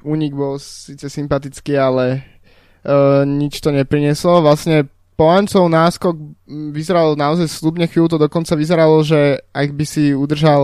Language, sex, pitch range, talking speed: Slovak, male, 140-155 Hz, 135 wpm